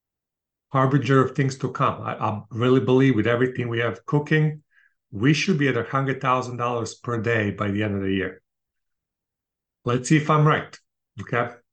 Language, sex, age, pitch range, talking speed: English, male, 40-59, 115-150 Hz, 170 wpm